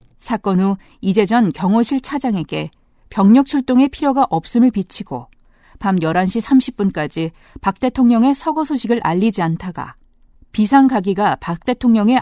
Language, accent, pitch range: Korean, native, 180-240 Hz